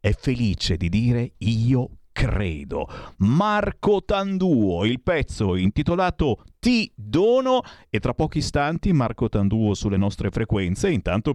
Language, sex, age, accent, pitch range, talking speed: Italian, male, 50-69, native, 90-135 Hz, 120 wpm